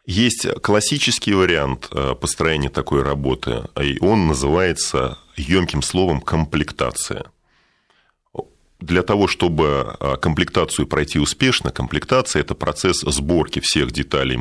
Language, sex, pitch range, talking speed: Russian, male, 70-95 Hz, 100 wpm